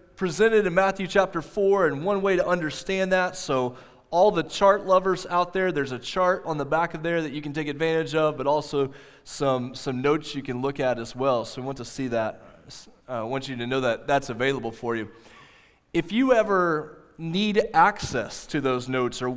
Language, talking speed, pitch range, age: English, 215 wpm, 145-195 Hz, 20-39